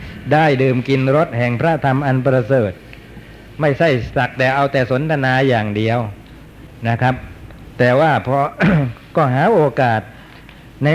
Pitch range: 115-135 Hz